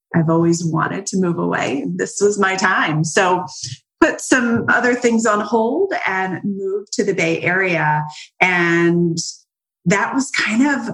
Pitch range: 155-205 Hz